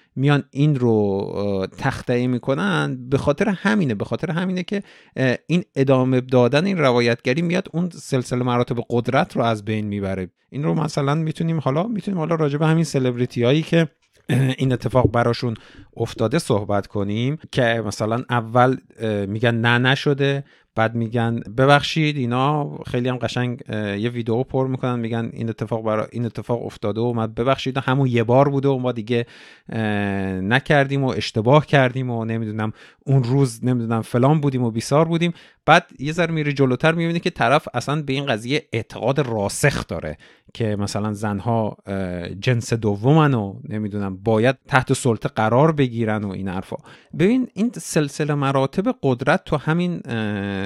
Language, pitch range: Persian, 115-145 Hz